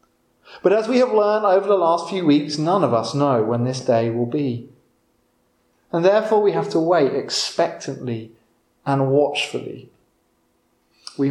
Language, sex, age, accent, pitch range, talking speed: English, male, 40-59, British, 120-150 Hz, 155 wpm